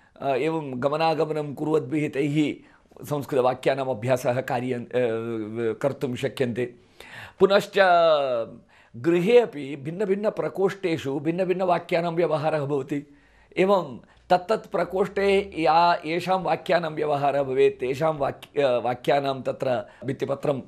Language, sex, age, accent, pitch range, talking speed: English, male, 50-69, Indian, 135-175 Hz, 100 wpm